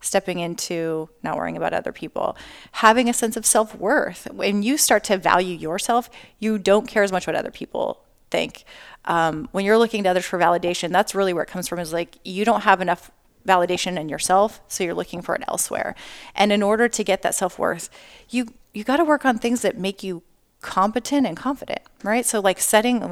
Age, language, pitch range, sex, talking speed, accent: 30-49, English, 180-225 Hz, female, 210 wpm, American